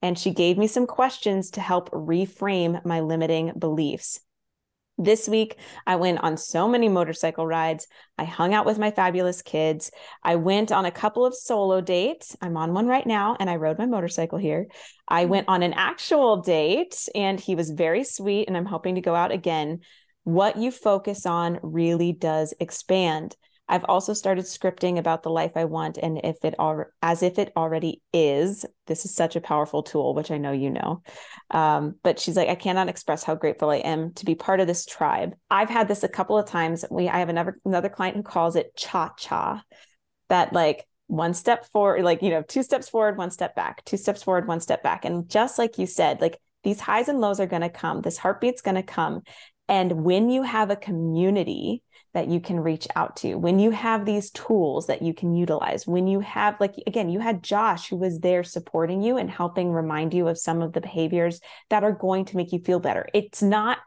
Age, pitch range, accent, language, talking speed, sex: 20-39, 165-205 Hz, American, English, 215 wpm, female